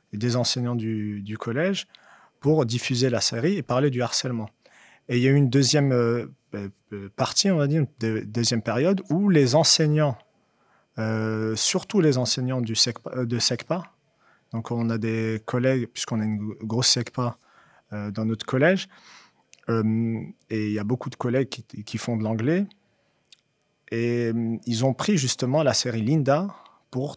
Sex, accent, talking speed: male, French, 170 wpm